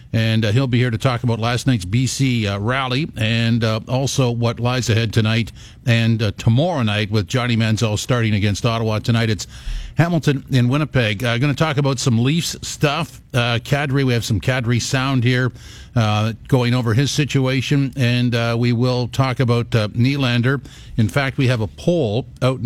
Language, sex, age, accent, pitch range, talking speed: English, male, 50-69, American, 110-135 Hz, 190 wpm